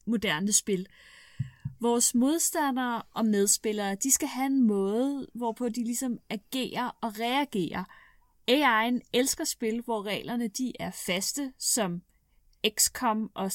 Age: 30-49